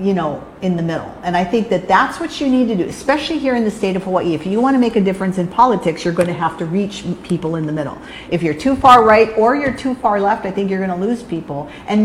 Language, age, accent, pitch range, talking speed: English, 50-69, American, 170-220 Hz, 295 wpm